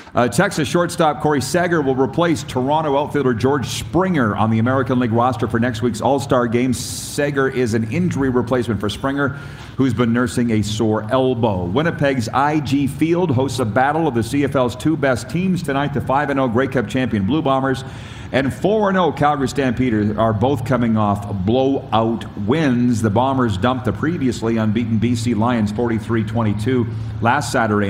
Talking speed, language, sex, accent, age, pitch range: 160 wpm, English, male, American, 40-59, 115-140 Hz